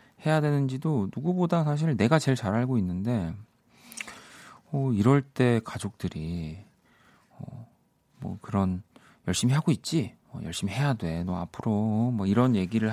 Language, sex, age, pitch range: Korean, male, 40-59, 90-125 Hz